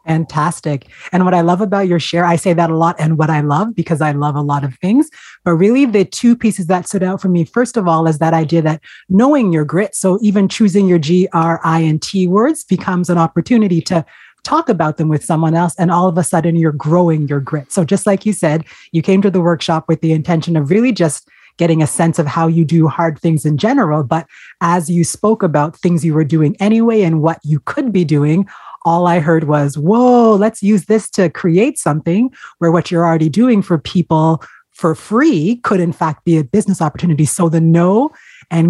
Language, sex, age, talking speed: English, female, 30-49, 220 wpm